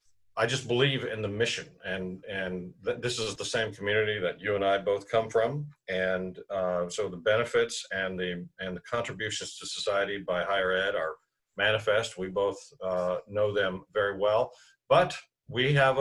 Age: 50-69